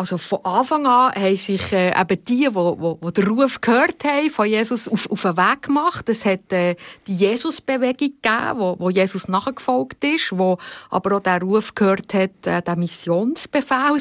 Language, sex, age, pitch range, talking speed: German, female, 50-69, 185-255 Hz, 175 wpm